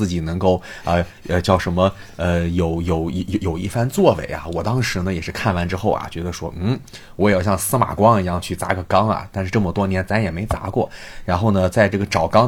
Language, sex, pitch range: Chinese, male, 90-110 Hz